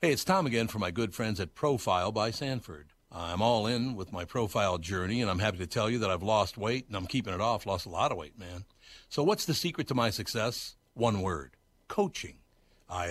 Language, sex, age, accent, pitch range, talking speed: English, male, 60-79, American, 95-125 Hz, 235 wpm